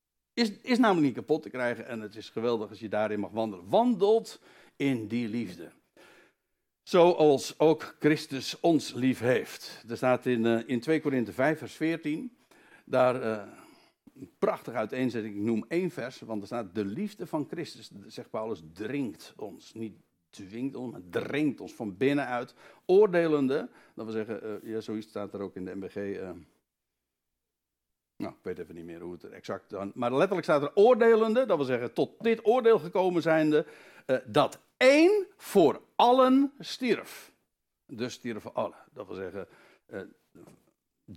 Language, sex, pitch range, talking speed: Dutch, male, 110-180 Hz, 165 wpm